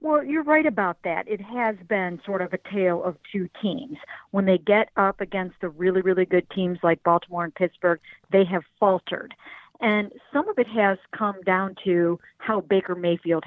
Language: English